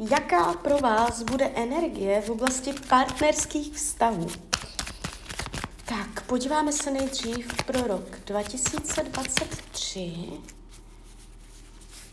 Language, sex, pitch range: Czech, female, 220-265 Hz